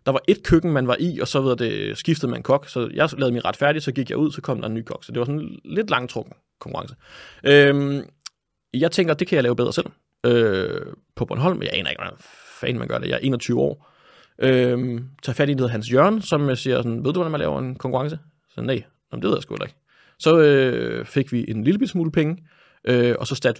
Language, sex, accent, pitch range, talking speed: Danish, male, native, 120-145 Hz, 245 wpm